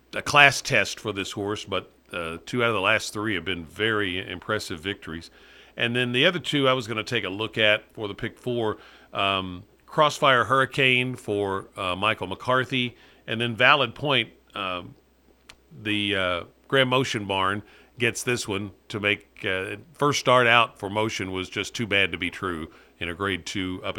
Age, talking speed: 50-69, 190 wpm